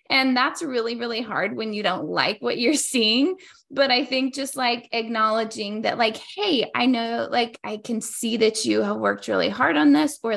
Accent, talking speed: American, 210 wpm